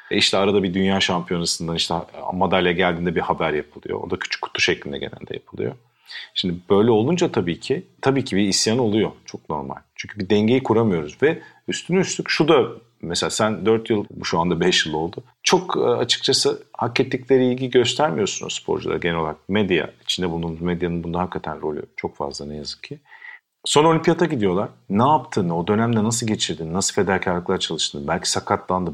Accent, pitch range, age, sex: native, 90-135 Hz, 50-69, male